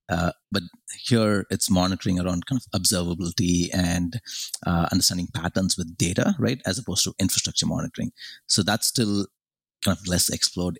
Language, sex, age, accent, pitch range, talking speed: English, male, 30-49, Indian, 85-100 Hz, 155 wpm